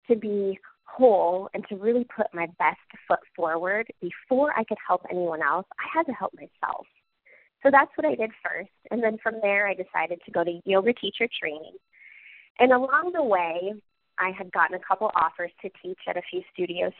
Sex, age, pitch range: female, 30-49, 180-245 Hz